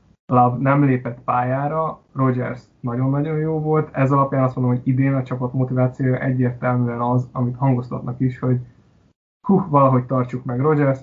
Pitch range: 125-140 Hz